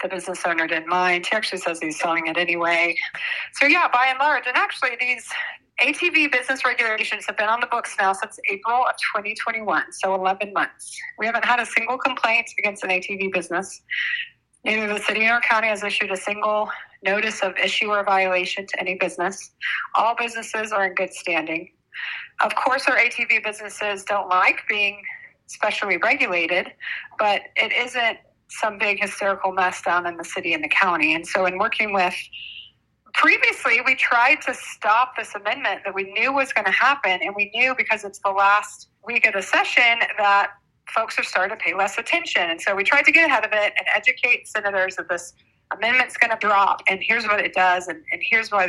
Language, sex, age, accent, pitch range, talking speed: English, female, 40-59, American, 185-235 Hz, 195 wpm